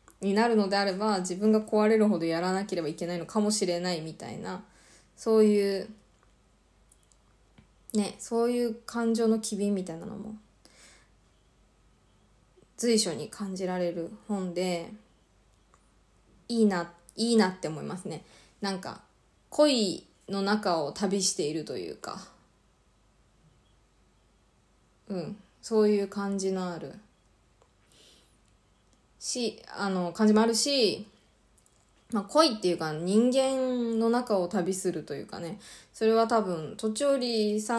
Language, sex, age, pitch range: Japanese, female, 20-39, 185-230 Hz